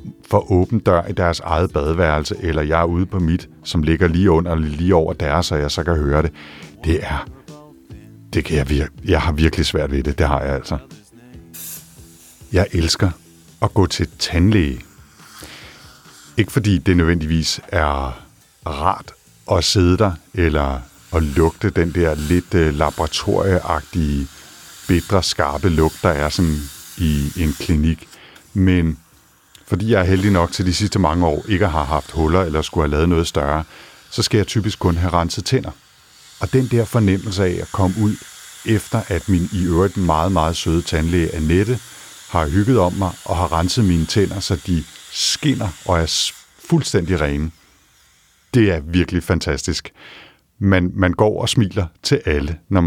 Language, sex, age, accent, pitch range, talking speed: Danish, male, 50-69, native, 80-95 Hz, 170 wpm